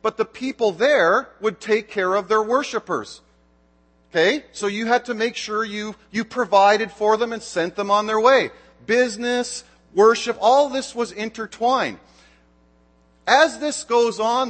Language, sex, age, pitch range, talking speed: English, male, 40-59, 185-235 Hz, 155 wpm